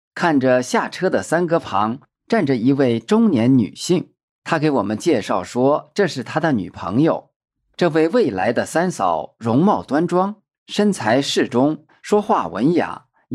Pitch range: 115-190 Hz